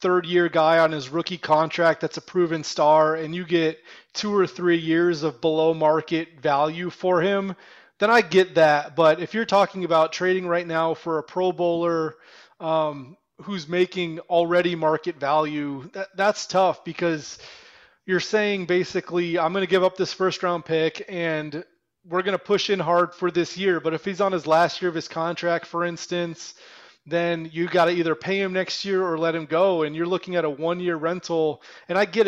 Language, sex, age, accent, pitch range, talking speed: English, male, 30-49, American, 160-185 Hz, 195 wpm